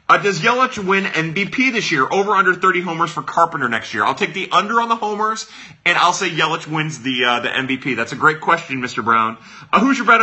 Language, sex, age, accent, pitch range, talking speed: English, male, 30-49, American, 140-195 Hz, 240 wpm